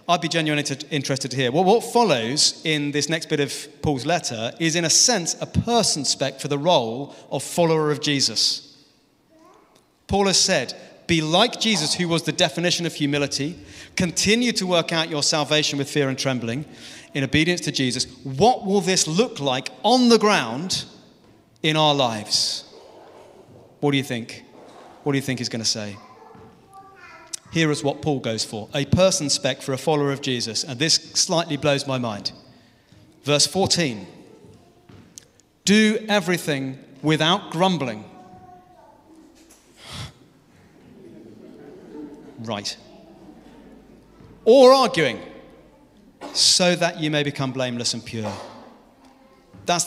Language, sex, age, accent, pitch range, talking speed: English, male, 30-49, British, 135-185 Hz, 140 wpm